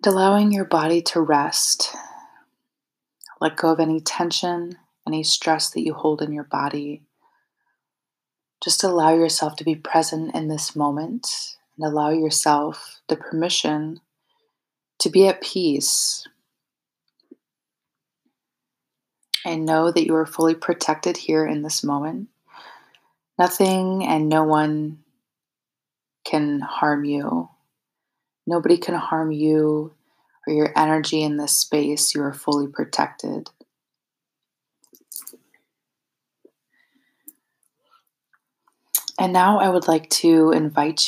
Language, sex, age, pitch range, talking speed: English, female, 20-39, 150-175 Hz, 110 wpm